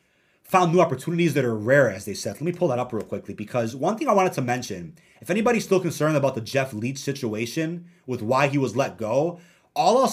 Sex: male